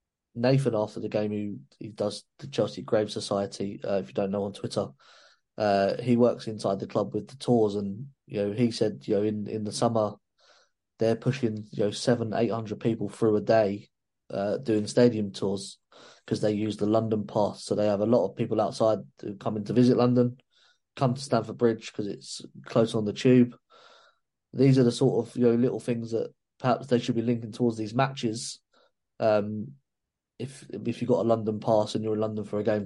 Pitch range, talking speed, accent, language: 105-120 Hz, 210 wpm, British, English